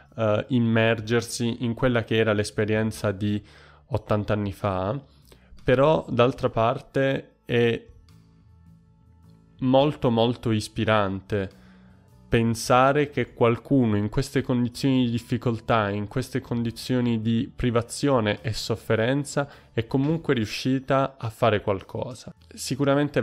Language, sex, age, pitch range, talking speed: Italian, male, 20-39, 105-125 Hz, 100 wpm